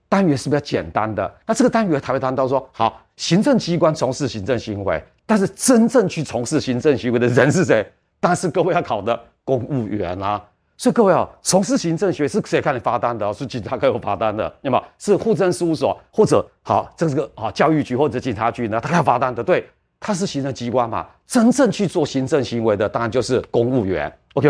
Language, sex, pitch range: Chinese, male, 120-165 Hz